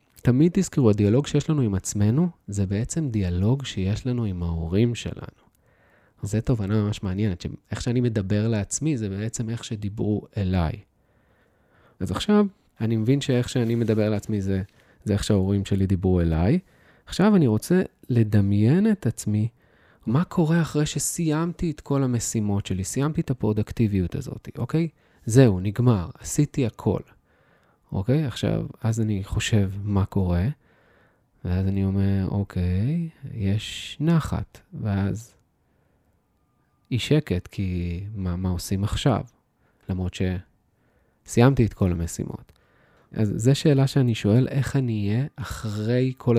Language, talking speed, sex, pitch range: Hebrew, 135 wpm, male, 100-130 Hz